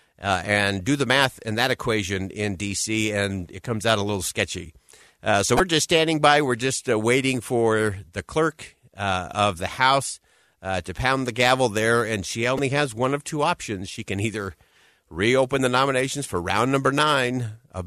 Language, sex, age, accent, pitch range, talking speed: English, male, 50-69, American, 100-130 Hz, 200 wpm